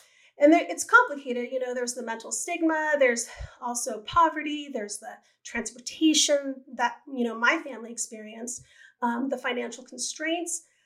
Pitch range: 245-315 Hz